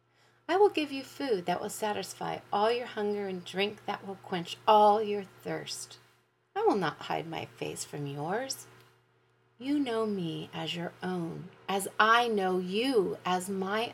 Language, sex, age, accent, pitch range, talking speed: English, female, 30-49, American, 160-240 Hz, 170 wpm